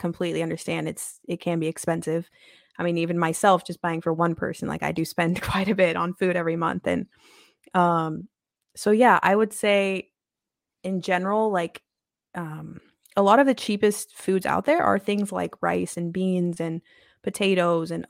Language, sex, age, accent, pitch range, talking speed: English, female, 20-39, American, 170-200 Hz, 180 wpm